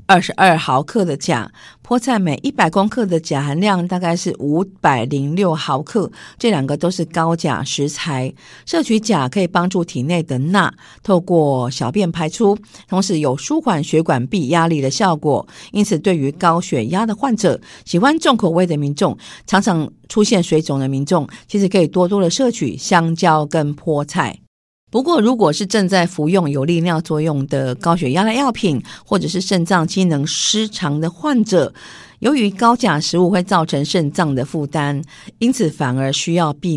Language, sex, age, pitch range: Chinese, female, 50-69, 150-195 Hz